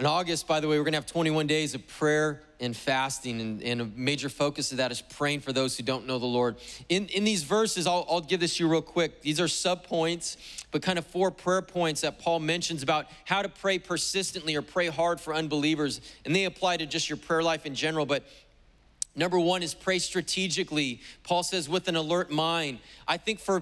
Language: English